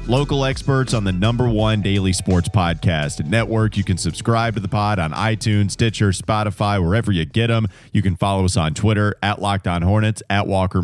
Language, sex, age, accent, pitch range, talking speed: English, male, 30-49, American, 95-115 Hz, 195 wpm